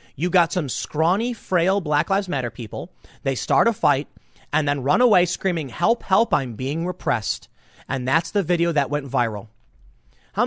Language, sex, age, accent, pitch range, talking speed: English, male, 30-49, American, 130-190 Hz, 180 wpm